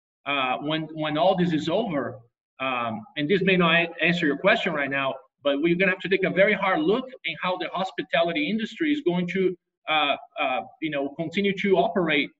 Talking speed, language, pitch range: 215 wpm, English, 155-205 Hz